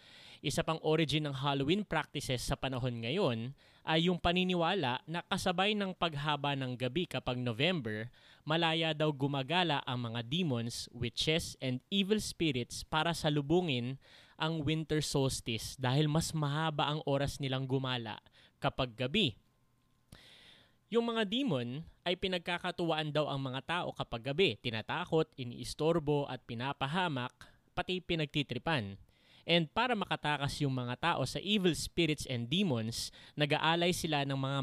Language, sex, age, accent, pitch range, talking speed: English, male, 20-39, Filipino, 130-165 Hz, 130 wpm